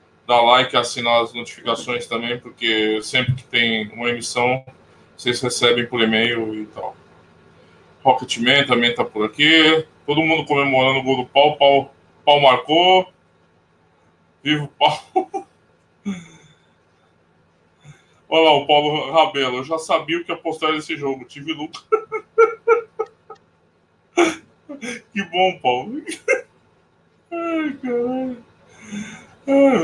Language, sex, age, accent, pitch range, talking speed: Portuguese, male, 20-39, Brazilian, 140-185 Hz, 115 wpm